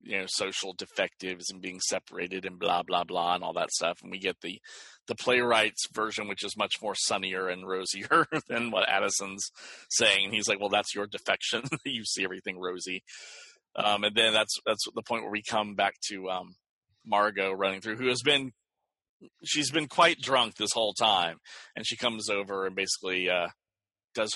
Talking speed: 190 wpm